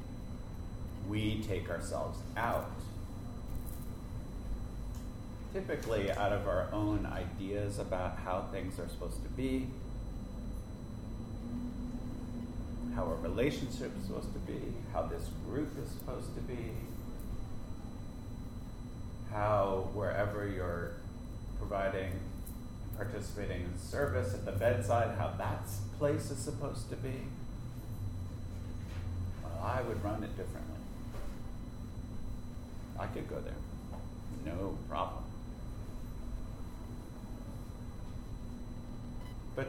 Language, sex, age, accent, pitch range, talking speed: English, male, 40-59, American, 95-120 Hz, 90 wpm